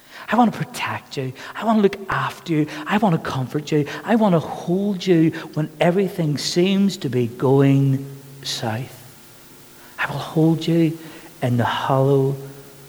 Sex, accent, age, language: male, British, 50-69, English